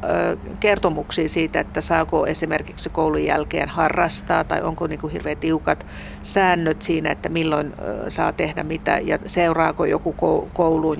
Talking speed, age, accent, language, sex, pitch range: 125 wpm, 50-69, native, Finnish, female, 100-160 Hz